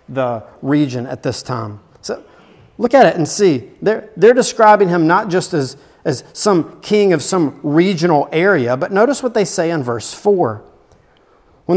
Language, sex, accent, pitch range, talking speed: English, male, American, 140-190 Hz, 175 wpm